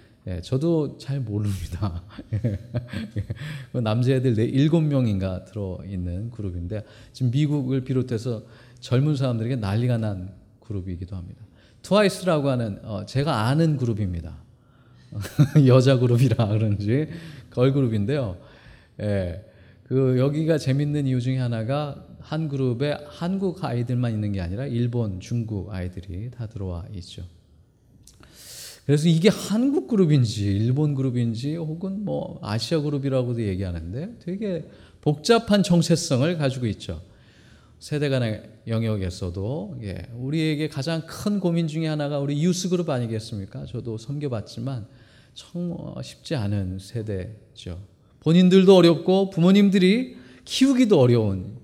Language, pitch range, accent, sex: Korean, 105-145 Hz, native, male